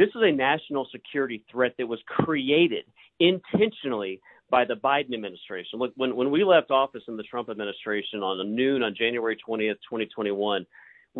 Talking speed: 165 wpm